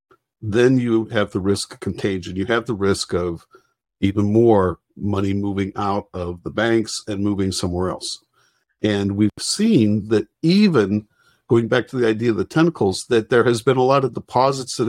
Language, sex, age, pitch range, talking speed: English, male, 50-69, 105-140 Hz, 185 wpm